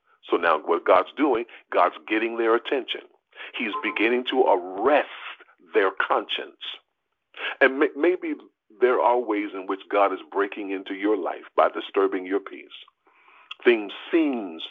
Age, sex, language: 50-69, male, English